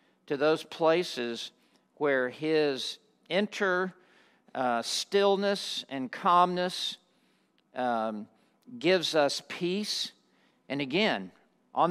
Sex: male